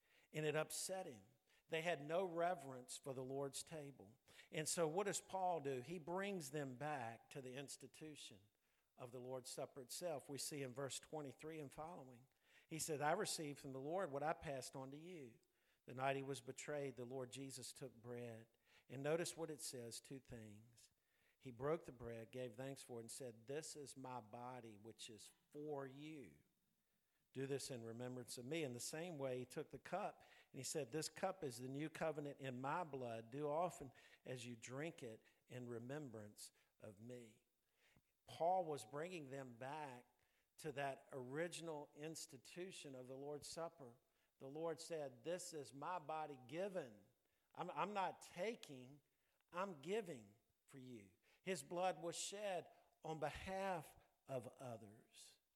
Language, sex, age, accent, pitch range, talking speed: English, male, 50-69, American, 125-160 Hz, 170 wpm